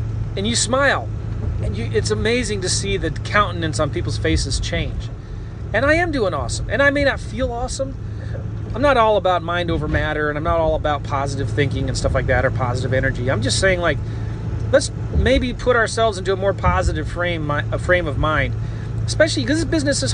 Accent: American